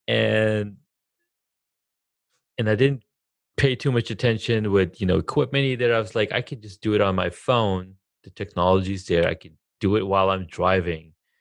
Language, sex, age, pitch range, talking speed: English, male, 30-49, 85-105 Hz, 180 wpm